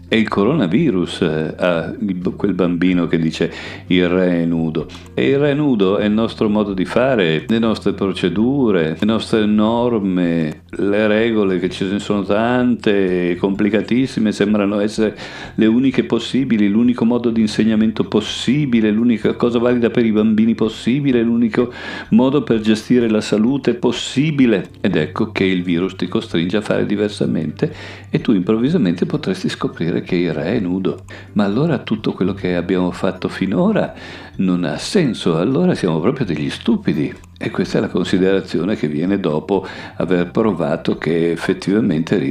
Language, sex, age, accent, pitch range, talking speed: Italian, male, 50-69, native, 90-115 Hz, 150 wpm